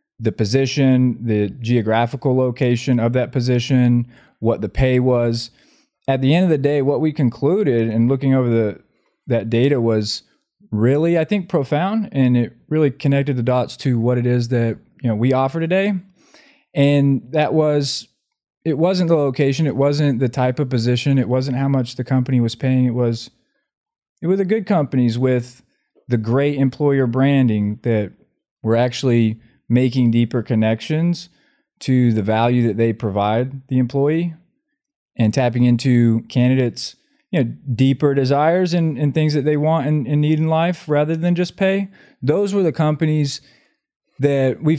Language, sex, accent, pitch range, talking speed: English, male, American, 120-155 Hz, 165 wpm